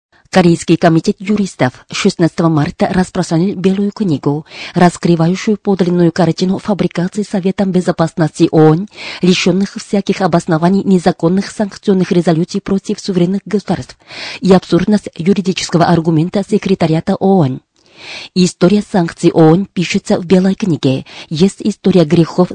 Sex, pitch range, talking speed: female, 170-195 Hz, 105 wpm